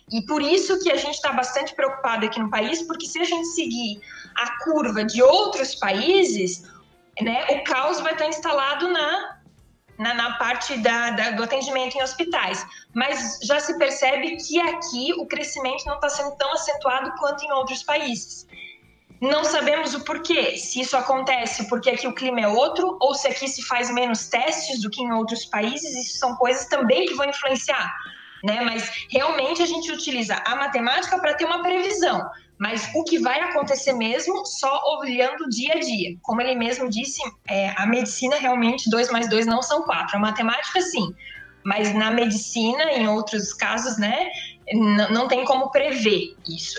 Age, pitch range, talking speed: 20-39, 230-295 Hz, 180 wpm